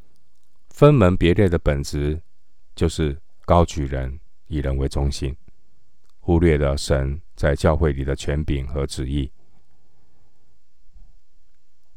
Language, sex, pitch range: Chinese, male, 70-85 Hz